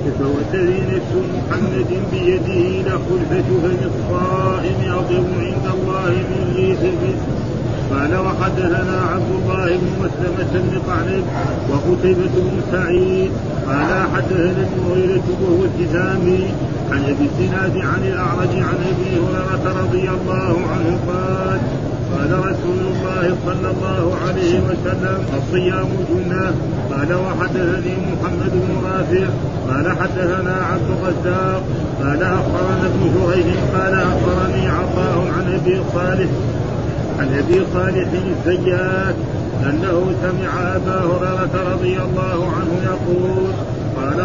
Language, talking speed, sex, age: Arabic, 115 wpm, male, 40-59